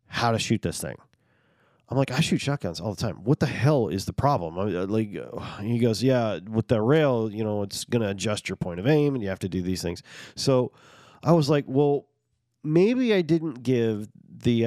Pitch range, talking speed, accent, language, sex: 105-135 Hz, 215 wpm, American, English, male